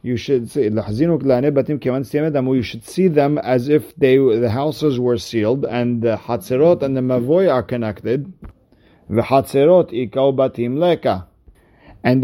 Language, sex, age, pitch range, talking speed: English, male, 50-69, 115-140 Hz, 100 wpm